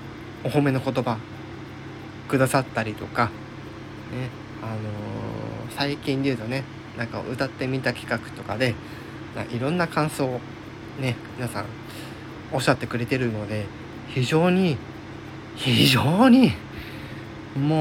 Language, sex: Japanese, male